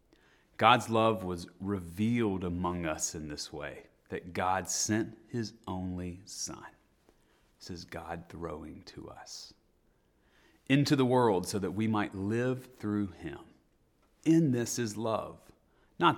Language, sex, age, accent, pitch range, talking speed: English, male, 30-49, American, 90-110 Hz, 135 wpm